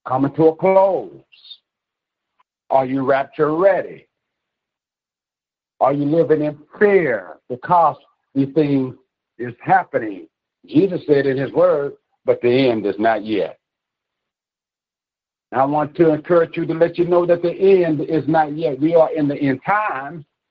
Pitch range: 150-195 Hz